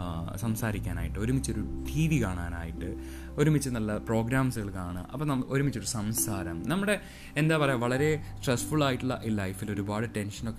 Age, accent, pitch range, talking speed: 20-39, native, 95-135 Hz, 120 wpm